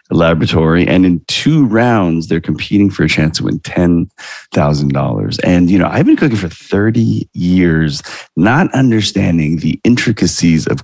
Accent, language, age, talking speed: American, English, 30-49, 160 wpm